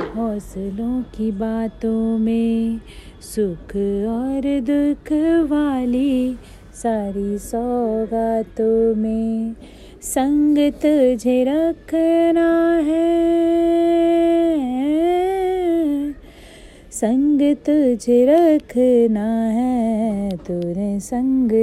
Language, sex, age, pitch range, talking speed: Hindi, female, 30-49, 225-300 Hz, 60 wpm